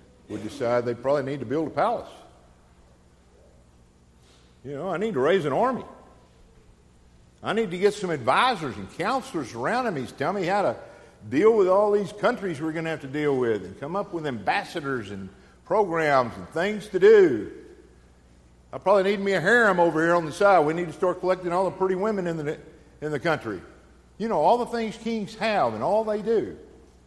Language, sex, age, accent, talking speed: English, male, 50-69, American, 200 wpm